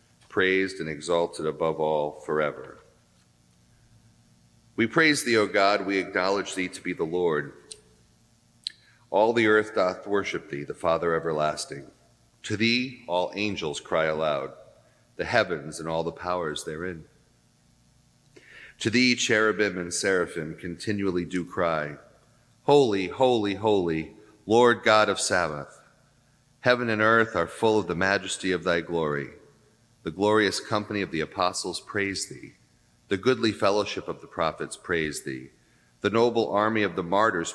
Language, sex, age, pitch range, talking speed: English, male, 40-59, 85-115 Hz, 140 wpm